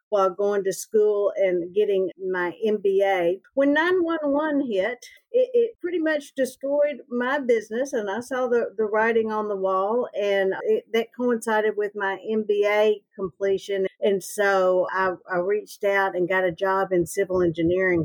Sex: female